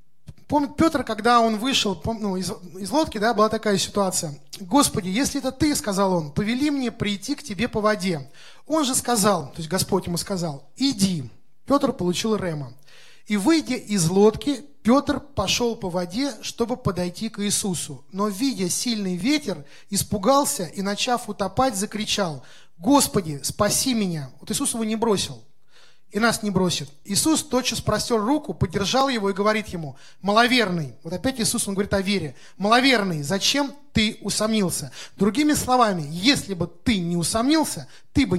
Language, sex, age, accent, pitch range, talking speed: Russian, male, 20-39, native, 185-245 Hz, 155 wpm